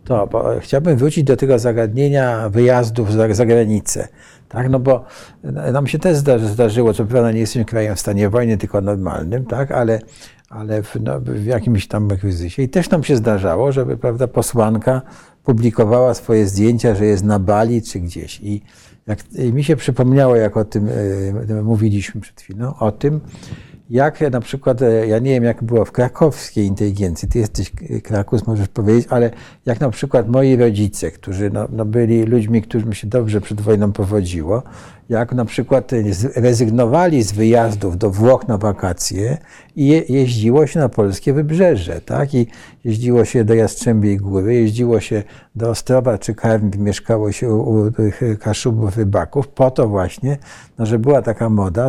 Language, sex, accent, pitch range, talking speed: Polish, male, native, 105-130 Hz, 165 wpm